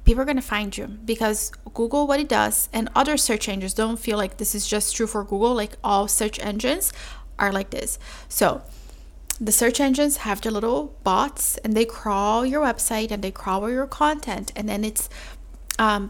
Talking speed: 200 wpm